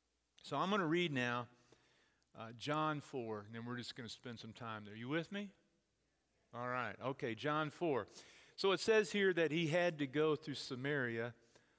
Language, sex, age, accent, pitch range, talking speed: English, male, 50-69, American, 115-150 Hz, 200 wpm